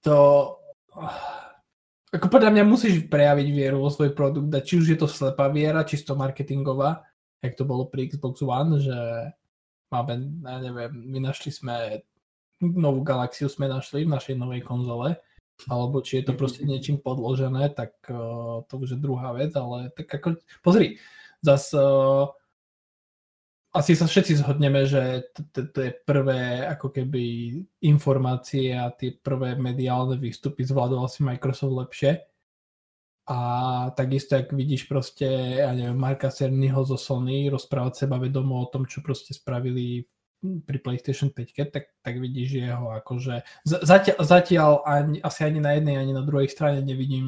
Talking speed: 145 wpm